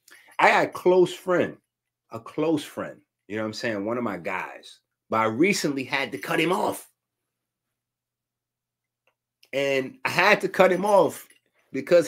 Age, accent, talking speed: 30-49, American, 165 wpm